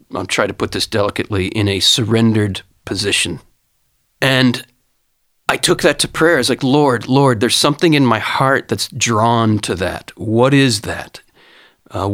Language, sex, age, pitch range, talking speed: English, male, 40-59, 115-145 Hz, 170 wpm